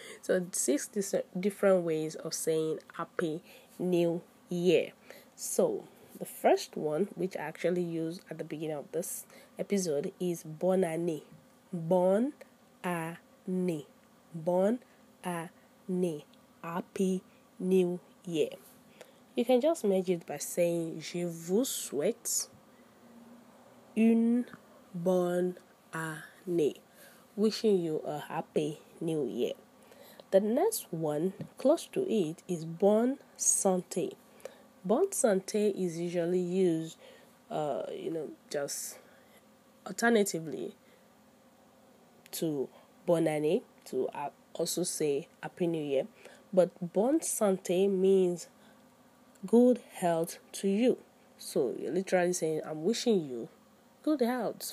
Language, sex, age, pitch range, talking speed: English, female, 20-39, 175-245 Hz, 105 wpm